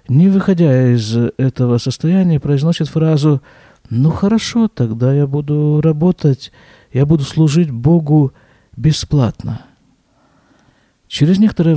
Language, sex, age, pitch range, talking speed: Russian, male, 50-69, 125-165 Hz, 100 wpm